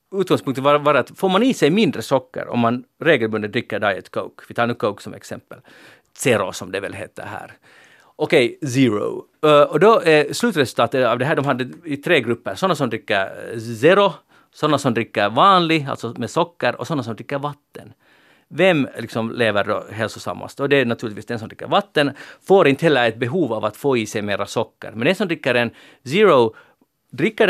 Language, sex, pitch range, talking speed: Swedish, male, 115-145 Hz, 195 wpm